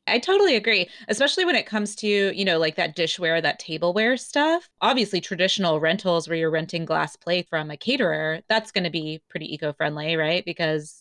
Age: 20-39